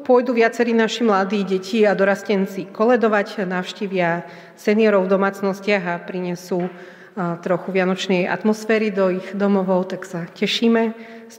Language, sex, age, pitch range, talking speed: Slovak, female, 40-59, 180-215 Hz, 125 wpm